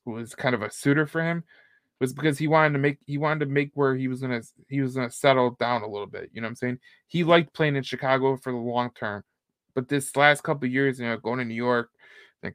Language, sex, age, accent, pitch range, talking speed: English, male, 20-39, American, 125-150 Hz, 270 wpm